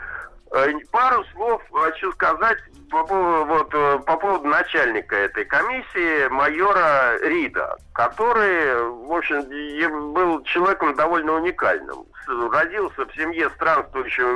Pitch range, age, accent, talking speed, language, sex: 160-235 Hz, 60-79, native, 95 wpm, Russian, male